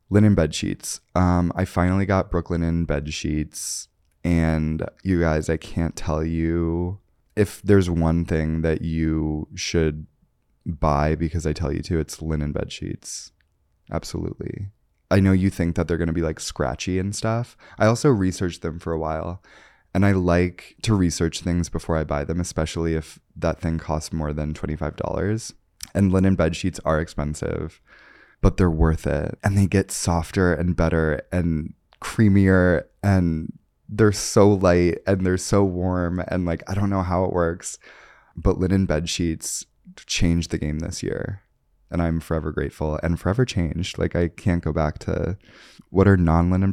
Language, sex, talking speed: English, male, 165 wpm